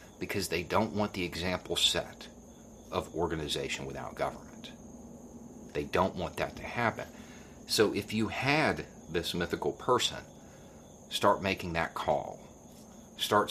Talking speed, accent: 130 wpm, American